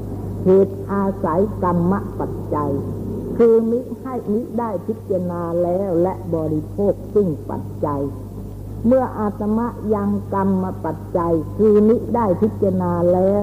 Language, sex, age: Thai, female, 60-79